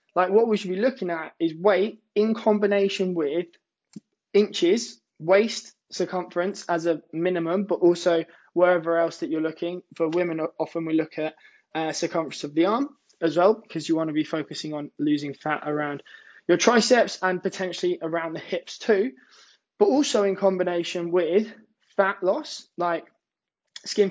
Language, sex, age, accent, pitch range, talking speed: English, male, 20-39, British, 165-205 Hz, 160 wpm